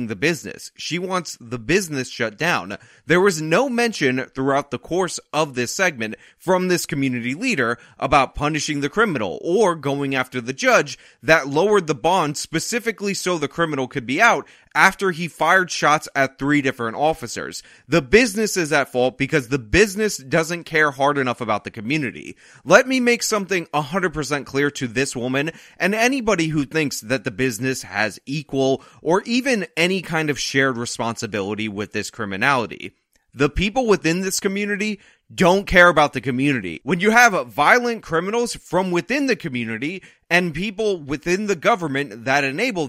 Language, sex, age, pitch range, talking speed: English, male, 30-49, 135-185 Hz, 165 wpm